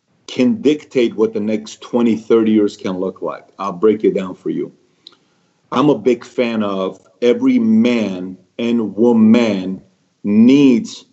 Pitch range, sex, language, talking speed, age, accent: 105-120 Hz, male, English, 145 wpm, 40-59, American